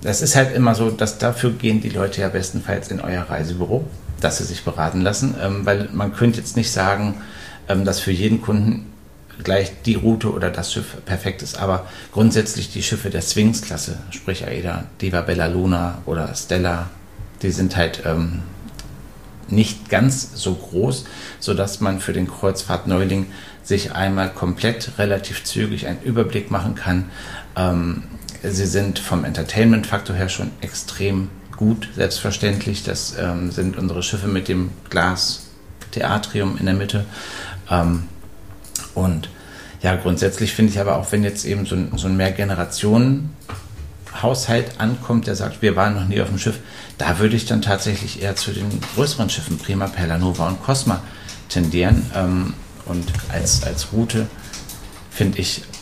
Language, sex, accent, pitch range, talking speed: German, male, German, 90-110 Hz, 155 wpm